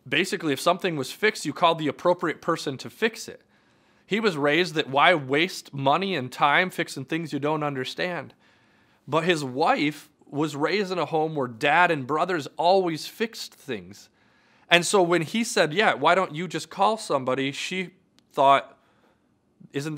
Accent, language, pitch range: American, English, 145-185 Hz